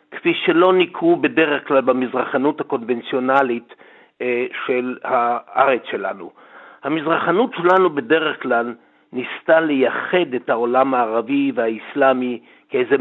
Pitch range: 125-190 Hz